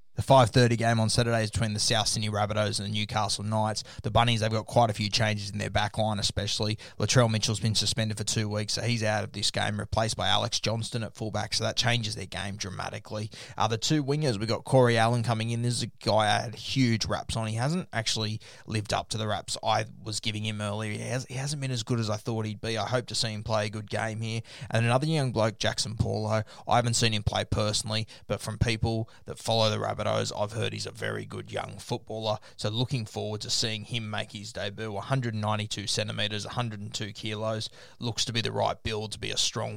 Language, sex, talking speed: English, male, 235 wpm